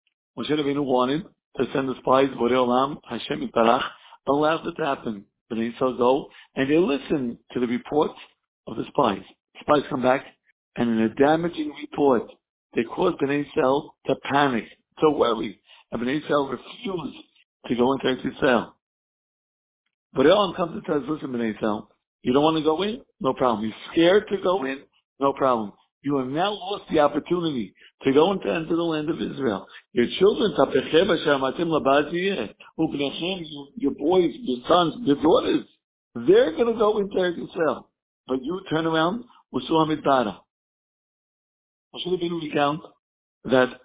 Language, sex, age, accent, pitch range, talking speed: English, male, 60-79, American, 130-165 Hz, 155 wpm